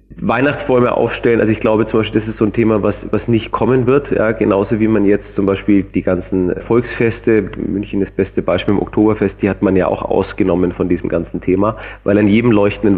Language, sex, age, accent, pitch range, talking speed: German, male, 30-49, German, 95-110 Hz, 220 wpm